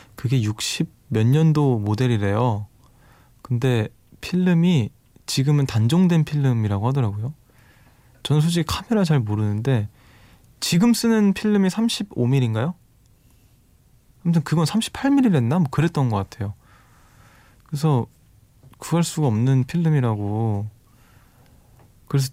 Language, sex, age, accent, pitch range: Korean, male, 20-39, native, 110-145 Hz